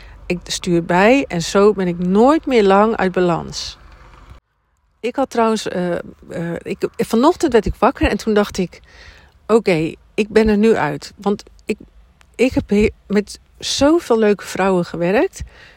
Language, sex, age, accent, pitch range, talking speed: Dutch, female, 50-69, Dutch, 180-225 Hz, 160 wpm